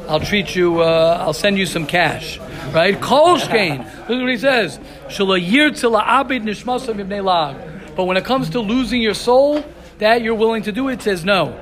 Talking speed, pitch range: 155 wpm, 190-230 Hz